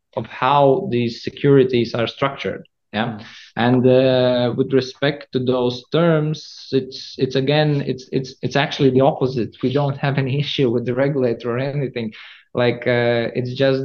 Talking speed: 160 wpm